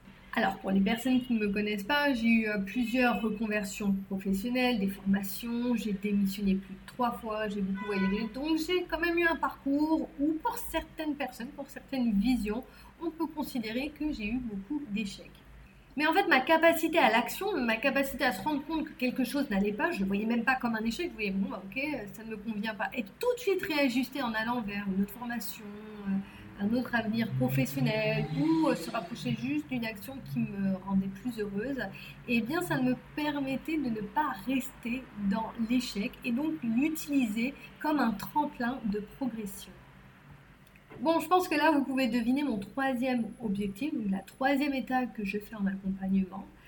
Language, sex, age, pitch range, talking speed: French, female, 30-49, 200-275 Hz, 195 wpm